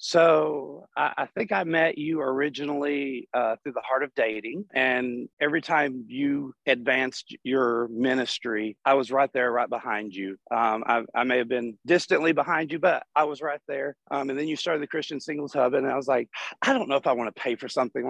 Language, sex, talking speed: English, male, 210 wpm